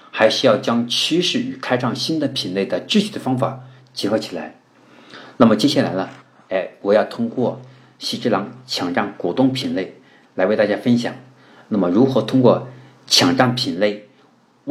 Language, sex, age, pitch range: Chinese, male, 50-69, 120-170 Hz